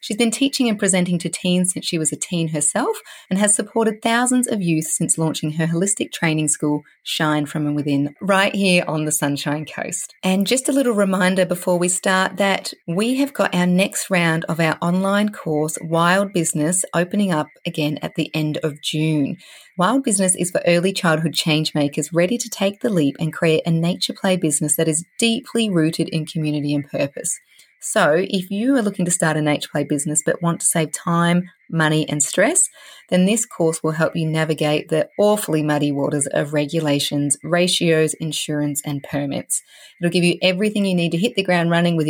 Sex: female